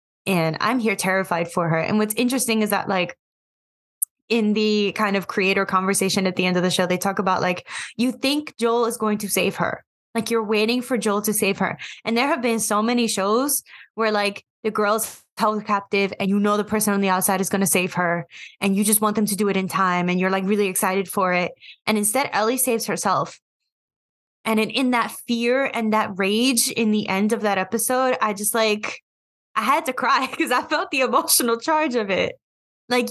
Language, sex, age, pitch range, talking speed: English, female, 10-29, 195-240 Hz, 220 wpm